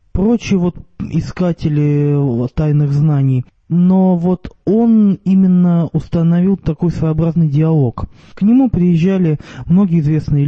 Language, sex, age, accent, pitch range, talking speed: Russian, male, 20-39, native, 140-175 Hz, 110 wpm